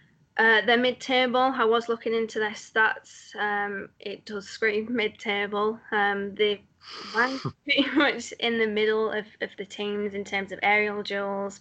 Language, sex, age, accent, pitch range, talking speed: English, female, 10-29, British, 195-225 Hz, 155 wpm